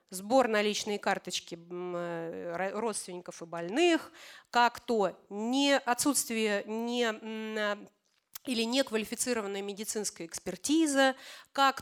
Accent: native